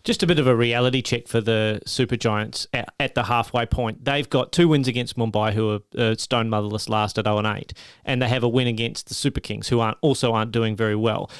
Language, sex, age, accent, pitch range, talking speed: English, male, 30-49, Australian, 115-140 Hz, 230 wpm